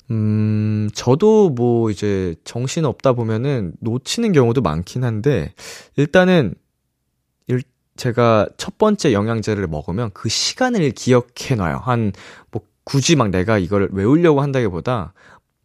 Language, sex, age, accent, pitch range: Korean, male, 20-39, native, 100-155 Hz